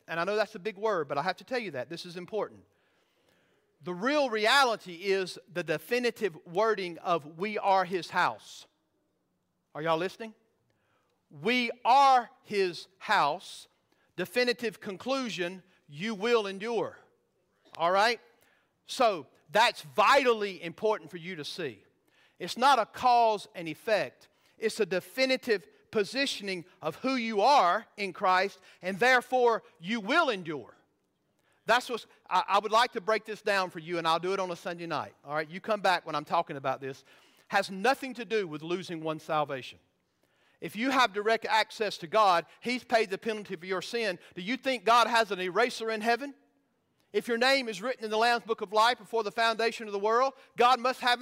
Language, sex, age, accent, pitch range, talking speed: English, male, 50-69, American, 180-240 Hz, 180 wpm